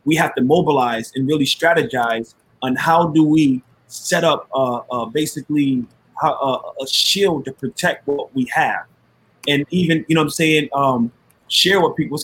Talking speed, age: 175 wpm, 30-49